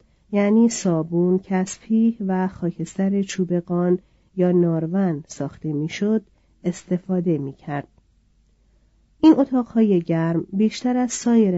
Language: Persian